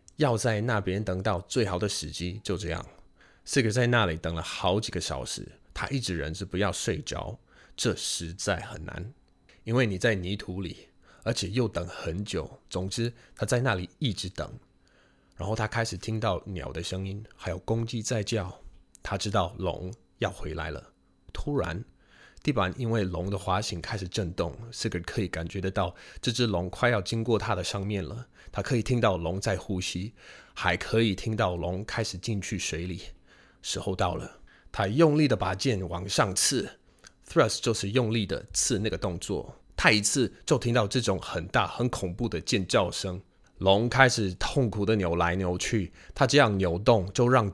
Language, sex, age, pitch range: Chinese, male, 20-39, 90-115 Hz